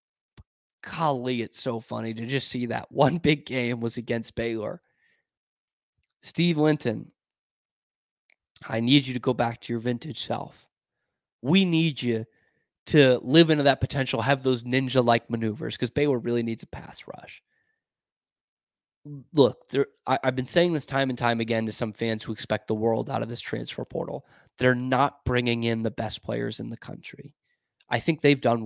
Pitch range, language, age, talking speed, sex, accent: 115-145 Hz, English, 20-39, 165 wpm, male, American